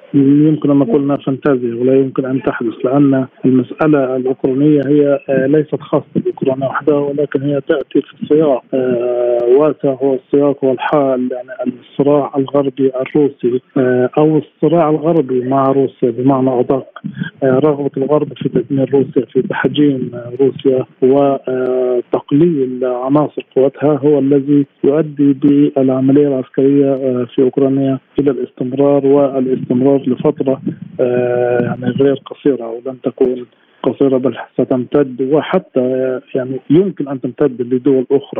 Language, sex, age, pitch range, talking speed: Arabic, male, 40-59, 130-145 Hz, 115 wpm